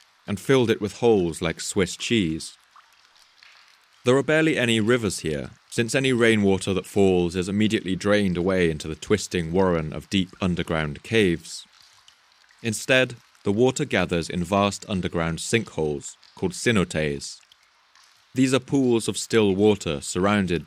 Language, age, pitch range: English, 30-49, 85-110 Hz